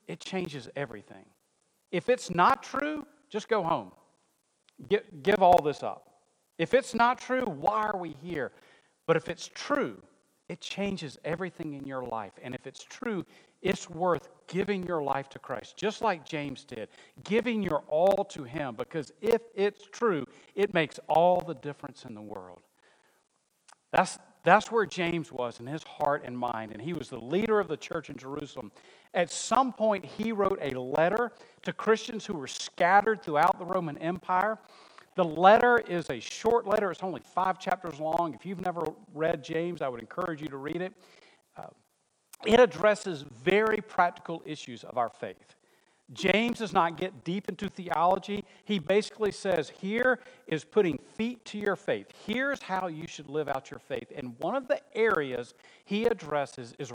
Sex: male